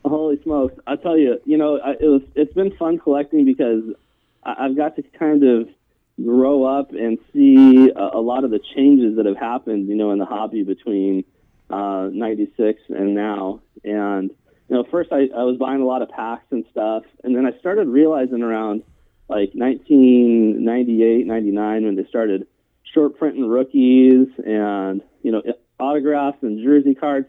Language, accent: English, American